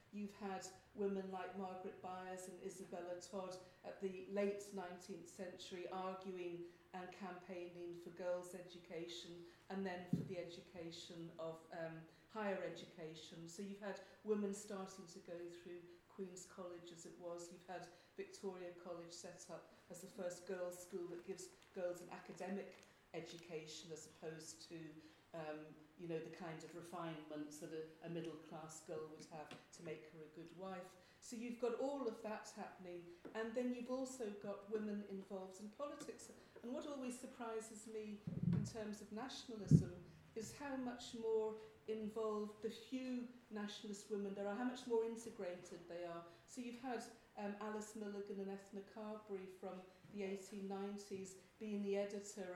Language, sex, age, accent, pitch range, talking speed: English, female, 50-69, British, 175-210 Hz, 160 wpm